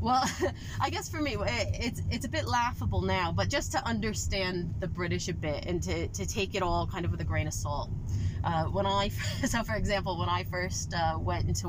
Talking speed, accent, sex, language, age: 225 wpm, American, female, English, 20-39